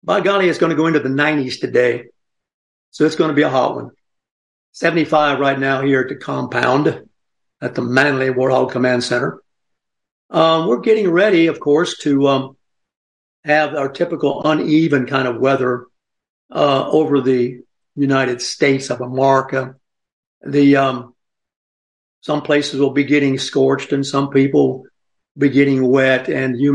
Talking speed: 155 wpm